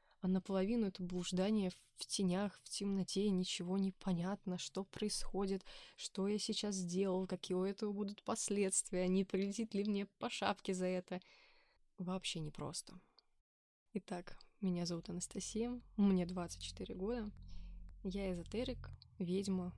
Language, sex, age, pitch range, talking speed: Russian, female, 20-39, 175-200 Hz, 125 wpm